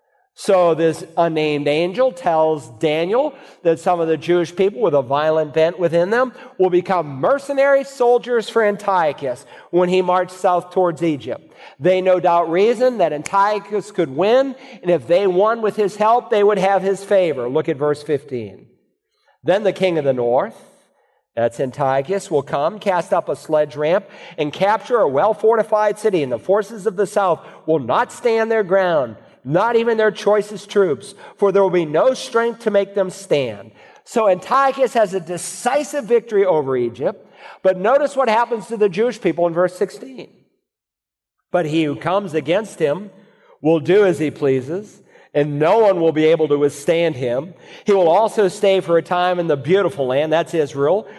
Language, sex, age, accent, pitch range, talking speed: English, male, 40-59, American, 160-210 Hz, 180 wpm